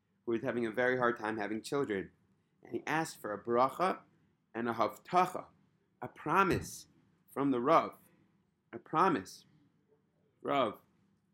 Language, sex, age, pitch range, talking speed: English, male, 30-49, 125-175 Hz, 140 wpm